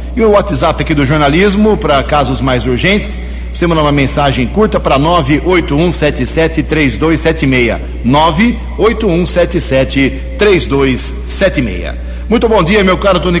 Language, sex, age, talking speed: Portuguese, male, 60-79, 105 wpm